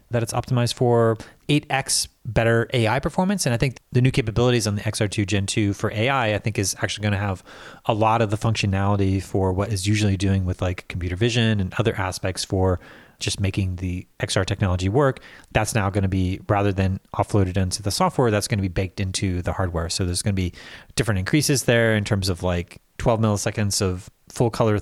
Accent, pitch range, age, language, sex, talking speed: American, 95-120 Hz, 30-49, English, male, 205 wpm